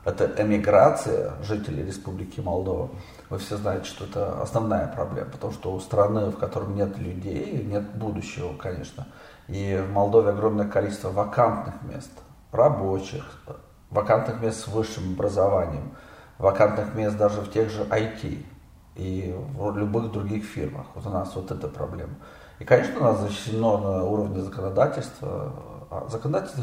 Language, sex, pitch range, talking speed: Romanian, male, 100-120 Hz, 140 wpm